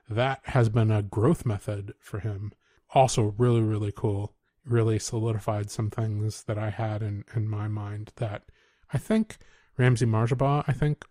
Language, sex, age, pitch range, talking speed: English, male, 30-49, 110-130 Hz, 160 wpm